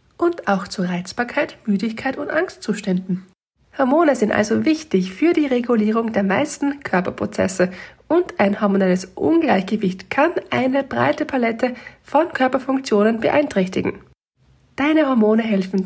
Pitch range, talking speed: 195-265 Hz, 115 wpm